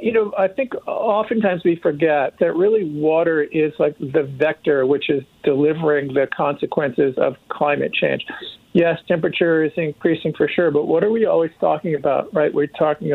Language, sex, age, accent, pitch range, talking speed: English, male, 50-69, American, 140-165 Hz, 175 wpm